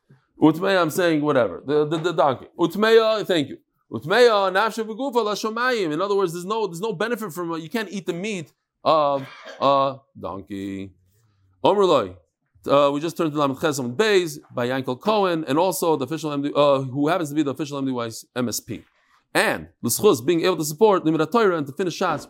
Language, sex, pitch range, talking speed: English, male, 130-185 Hz, 190 wpm